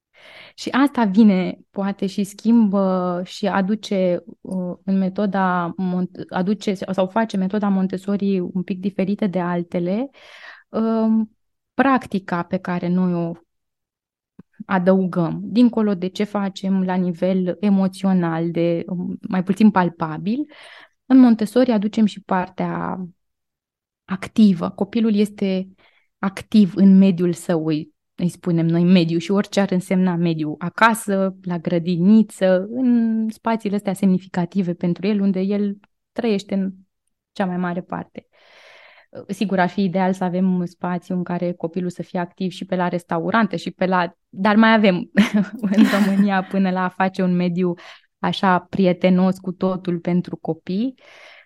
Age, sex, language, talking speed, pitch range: 20-39, female, Romanian, 130 wpm, 180-210 Hz